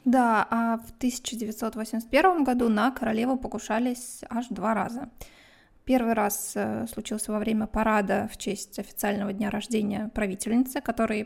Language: Russian